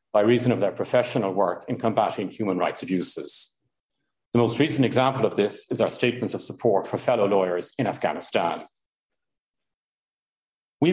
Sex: male